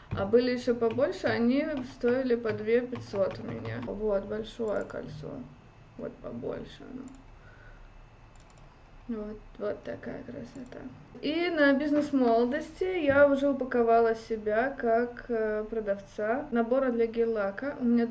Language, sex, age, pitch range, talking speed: Russian, female, 20-39, 220-265 Hz, 120 wpm